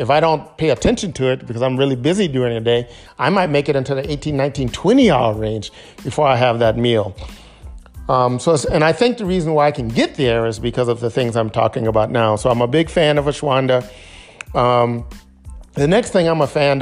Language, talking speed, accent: English, 235 wpm, American